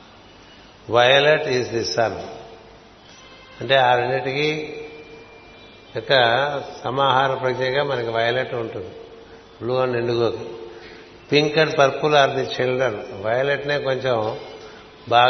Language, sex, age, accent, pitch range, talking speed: Telugu, male, 60-79, native, 120-140 Hz, 100 wpm